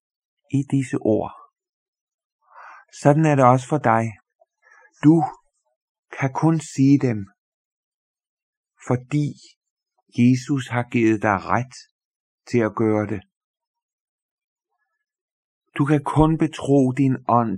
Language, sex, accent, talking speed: Danish, male, native, 100 wpm